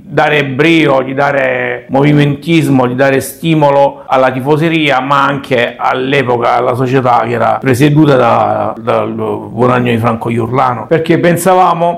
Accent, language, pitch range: native, Italian, 130-150 Hz